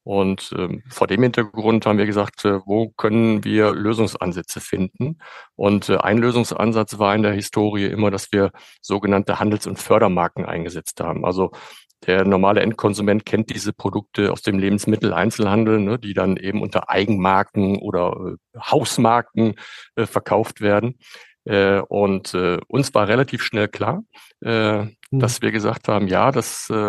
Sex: male